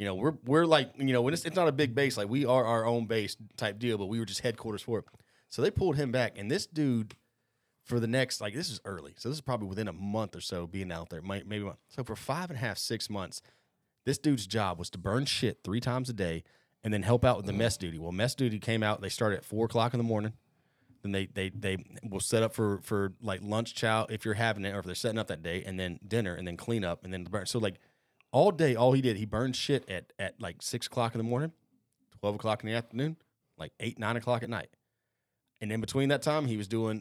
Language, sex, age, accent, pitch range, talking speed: English, male, 30-49, American, 100-125 Hz, 275 wpm